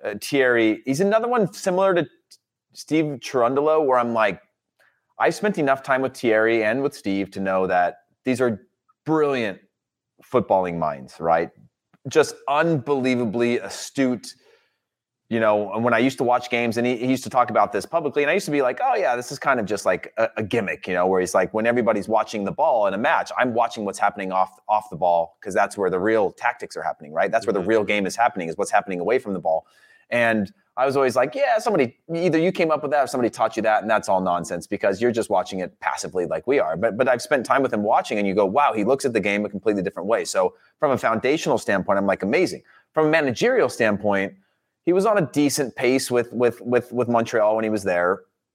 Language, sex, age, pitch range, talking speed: English, male, 30-49, 100-135 Hz, 235 wpm